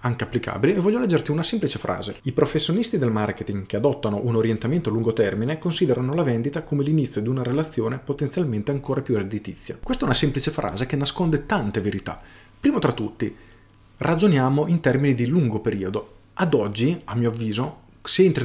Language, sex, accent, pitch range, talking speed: Italian, male, native, 115-150 Hz, 180 wpm